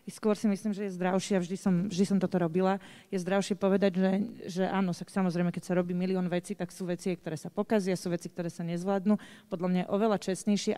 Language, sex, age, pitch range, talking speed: Slovak, female, 30-49, 195-220 Hz, 235 wpm